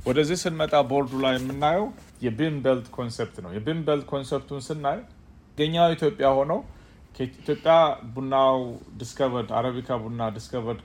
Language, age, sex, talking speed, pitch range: Amharic, 30-49, male, 110 wpm, 110-135 Hz